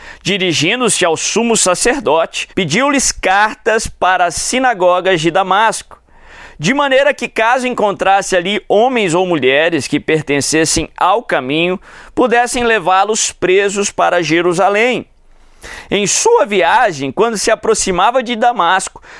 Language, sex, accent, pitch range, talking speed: Portuguese, male, Brazilian, 175-230 Hz, 115 wpm